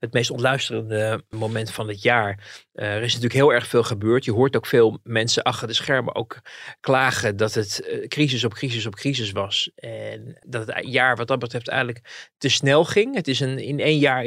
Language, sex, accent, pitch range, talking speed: Dutch, male, Dutch, 110-130 Hz, 200 wpm